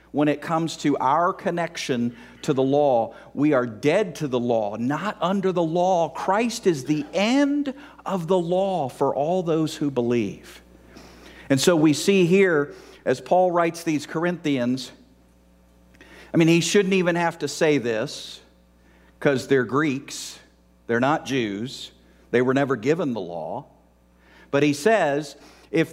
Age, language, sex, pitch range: 50-69, English, male, 130-180 Hz